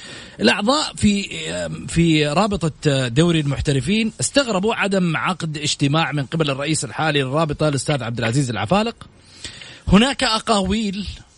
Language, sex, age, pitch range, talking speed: English, male, 30-49, 145-220 Hz, 110 wpm